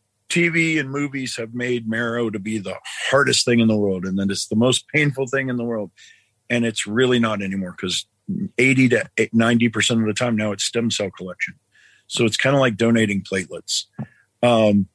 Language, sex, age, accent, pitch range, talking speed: English, male, 50-69, American, 105-125 Hz, 195 wpm